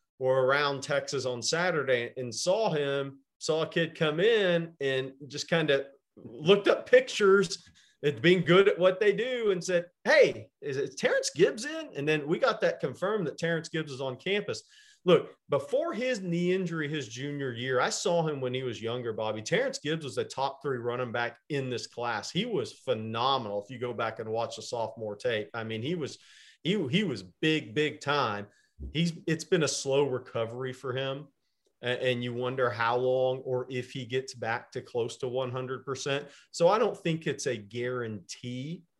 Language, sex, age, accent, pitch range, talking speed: English, male, 40-59, American, 120-160 Hz, 195 wpm